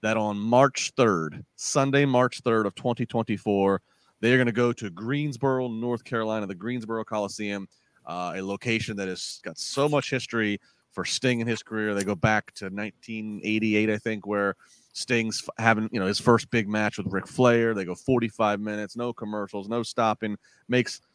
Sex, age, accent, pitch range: male, 30-49, American, 105-150 Hz